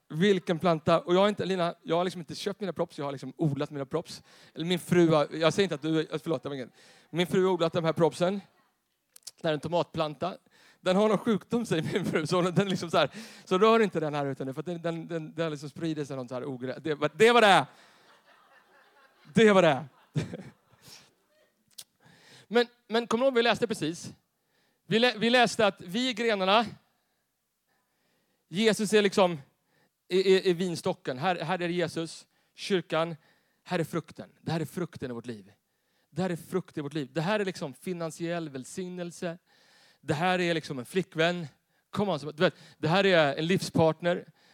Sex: male